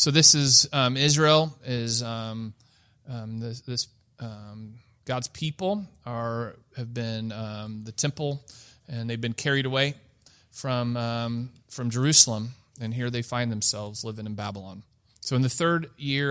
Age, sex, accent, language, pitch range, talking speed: 30-49, male, American, English, 115-145 Hz, 150 wpm